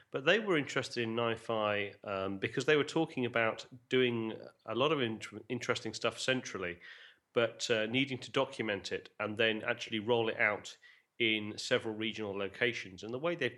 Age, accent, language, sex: 30-49, British, English, male